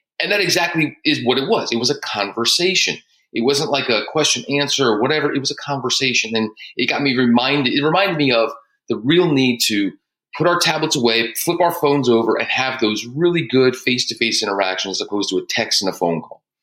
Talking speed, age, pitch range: 215 wpm, 30-49, 105-140 Hz